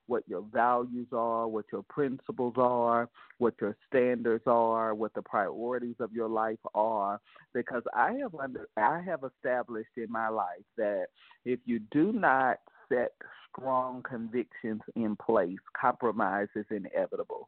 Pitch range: 110-125 Hz